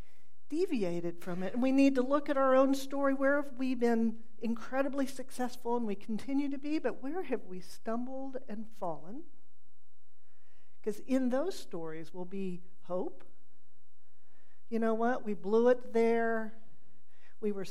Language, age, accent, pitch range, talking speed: English, 50-69, American, 205-255 Hz, 155 wpm